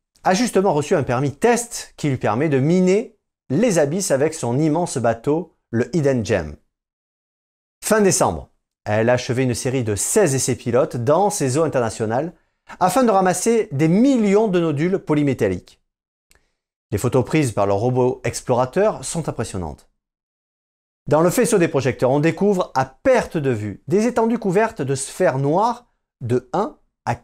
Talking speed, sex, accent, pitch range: 160 wpm, male, French, 120-170 Hz